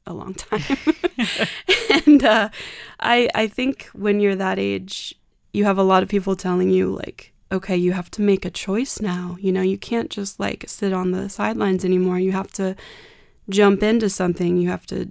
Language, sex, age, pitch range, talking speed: English, female, 20-39, 180-205 Hz, 195 wpm